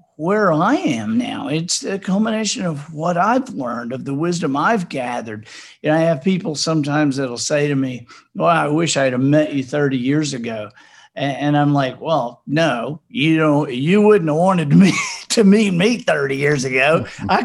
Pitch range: 155-220 Hz